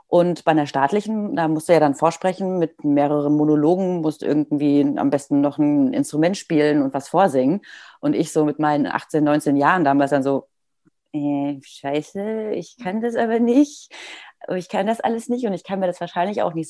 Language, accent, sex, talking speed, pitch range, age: German, German, female, 200 wpm, 145-180 Hz, 30-49